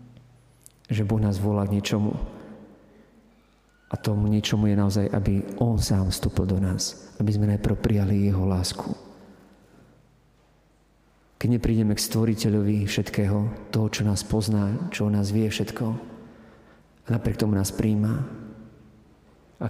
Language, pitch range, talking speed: Slovak, 100-115 Hz, 130 wpm